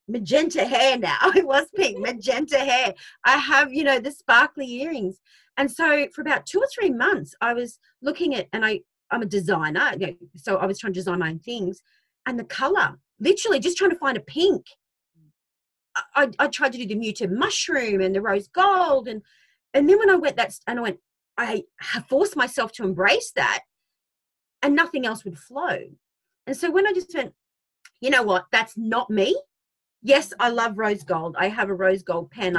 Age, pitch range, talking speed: 30-49, 195-290 Hz, 205 wpm